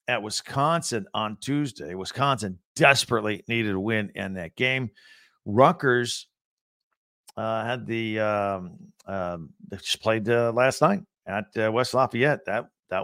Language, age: English, 50-69